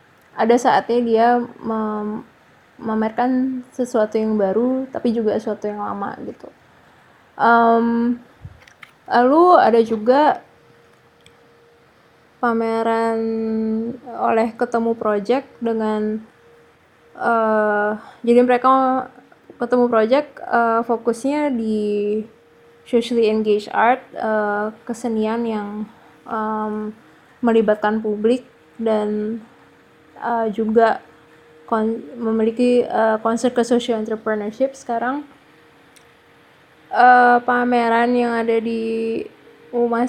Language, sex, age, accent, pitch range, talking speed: Indonesian, female, 20-39, native, 220-245 Hz, 80 wpm